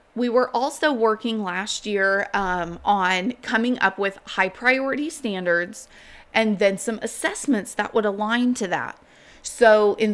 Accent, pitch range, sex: American, 200-255 Hz, female